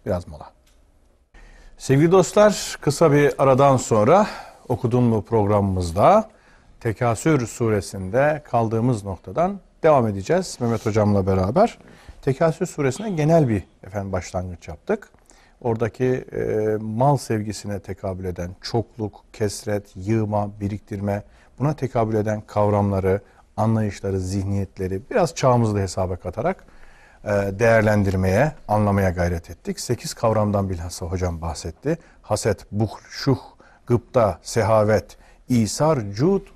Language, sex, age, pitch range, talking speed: Turkish, male, 50-69, 100-135 Hz, 105 wpm